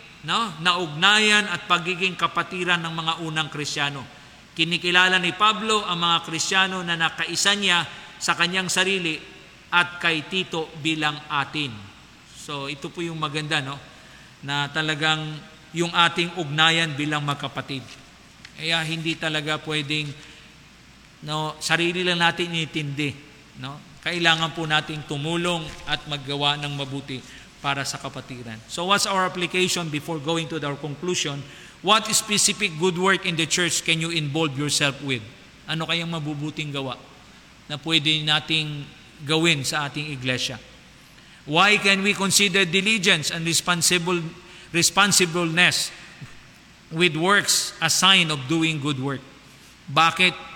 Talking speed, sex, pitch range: 130 wpm, male, 150-175 Hz